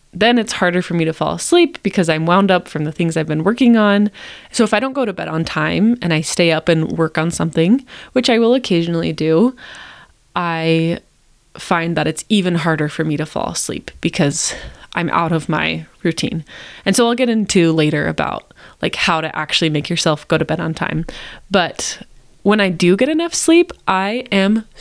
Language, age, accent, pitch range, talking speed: English, 20-39, American, 160-210 Hz, 205 wpm